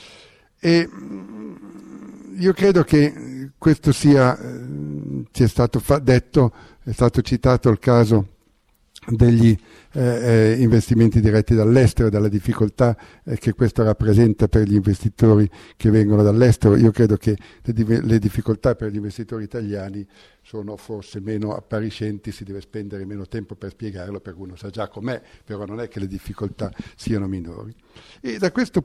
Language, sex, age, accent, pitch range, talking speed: Italian, male, 50-69, native, 105-125 Hz, 150 wpm